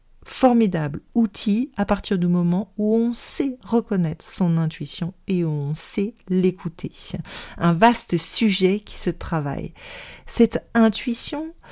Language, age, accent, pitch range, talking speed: French, 40-59, French, 170-225 Hz, 130 wpm